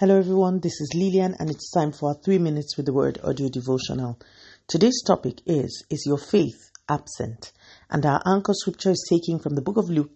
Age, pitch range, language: 40-59, 130-180 Hz, English